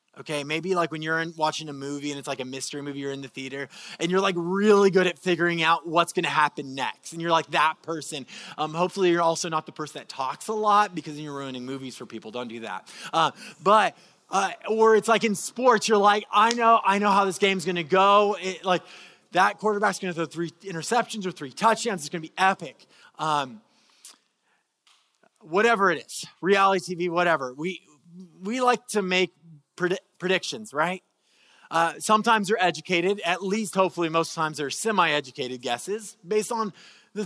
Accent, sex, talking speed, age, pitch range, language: American, male, 200 wpm, 20-39, 160-210 Hz, English